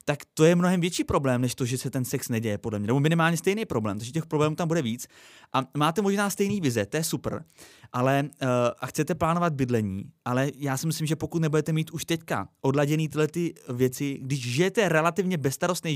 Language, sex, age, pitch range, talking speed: Czech, male, 30-49, 125-160 Hz, 215 wpm